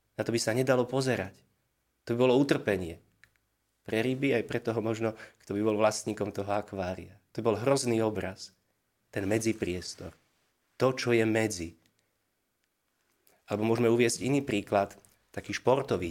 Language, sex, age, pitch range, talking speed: Slovak, male, 30-49, 100-120 Hz, 150 wpm